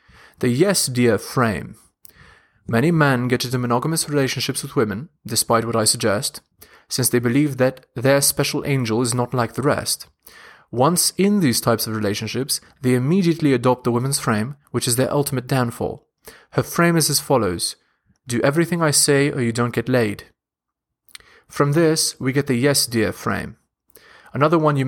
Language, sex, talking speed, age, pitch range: English, male, 170 wpm, 30-49, 120-145 Hz